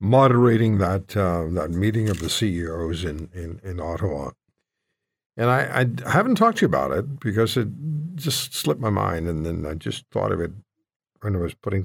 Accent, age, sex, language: American, 60-79, male, English